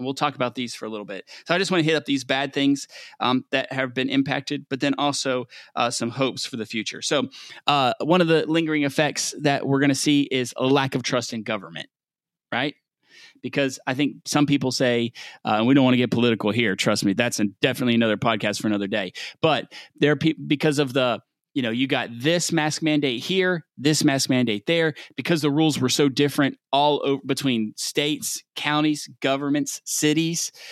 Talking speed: 210 wpm